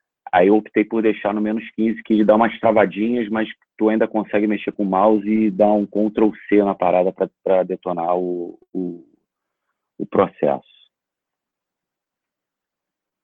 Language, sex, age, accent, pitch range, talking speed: Portuguese, male, 40-59, Brazilian, 90-105 Hz, 145 wpm